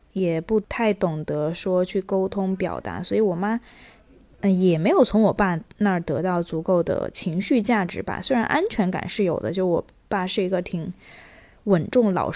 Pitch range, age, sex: 185-225 Hz, 20-39, female